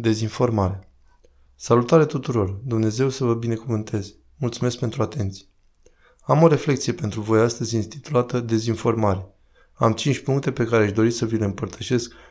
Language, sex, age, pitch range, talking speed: Romanian, male, 20-39, 110-130 Hz, 140 wpm